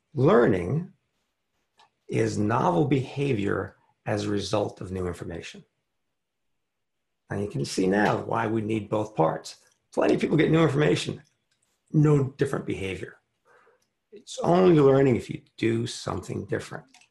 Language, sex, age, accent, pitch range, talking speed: English, male, 50-69, American, 105-150 Hz, 130 wpm